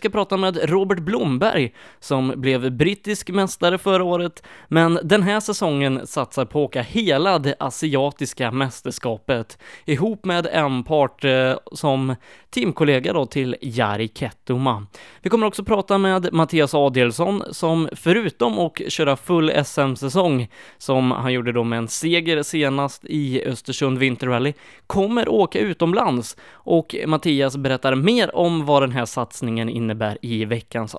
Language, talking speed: Swedish, 145 wpm